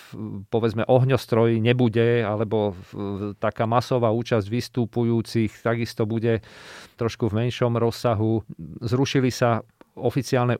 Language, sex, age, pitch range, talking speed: Slovak, male, 40-59, 110-120 Hz, 95 wpm